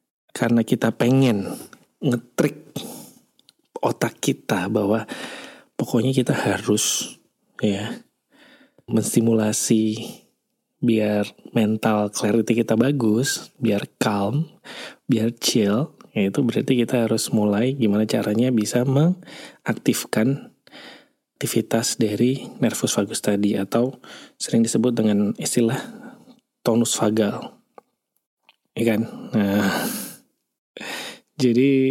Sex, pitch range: male, 105-125 Hz